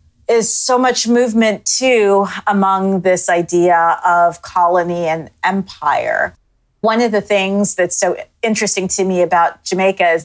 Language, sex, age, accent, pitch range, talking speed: English, female, 30-49, American, 175-210 Hz, 140 wpm